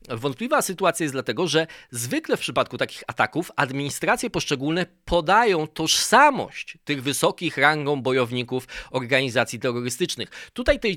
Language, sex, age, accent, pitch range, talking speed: Polish, male, 20-39, native, 130-160 Hz, 120 wpm